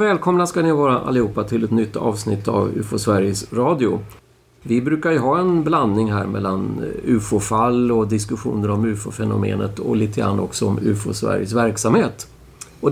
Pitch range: 105-135 Hz